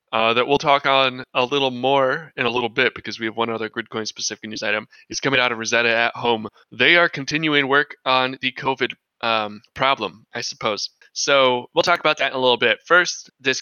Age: 20-39